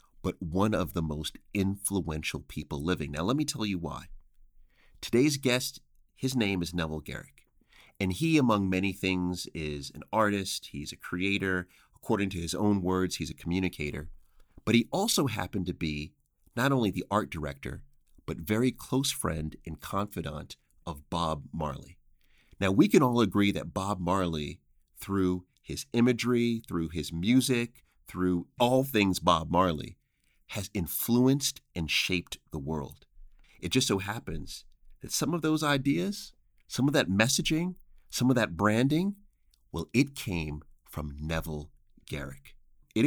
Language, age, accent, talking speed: English, 30-49, American, 150 wpm